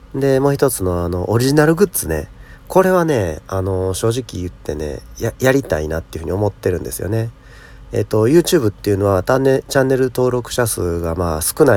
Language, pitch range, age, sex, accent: Japanese, 90-125 Hz, 40-59, male, native